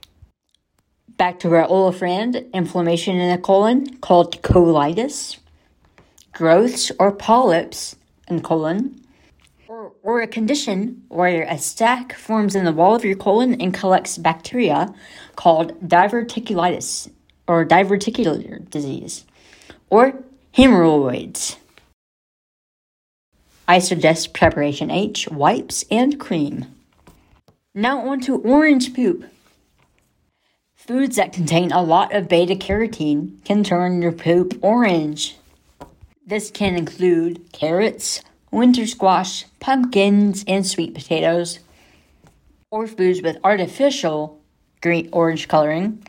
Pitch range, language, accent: 160-215 Hz, English, American